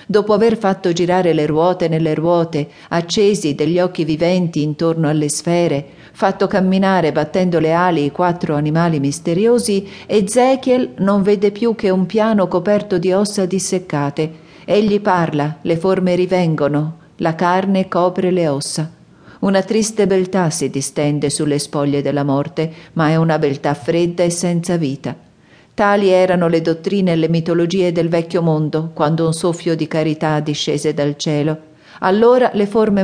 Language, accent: Italian, native